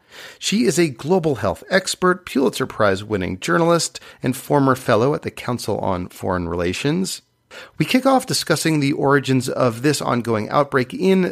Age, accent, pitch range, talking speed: 40-59, American, 110-160 Hz, 155 wpm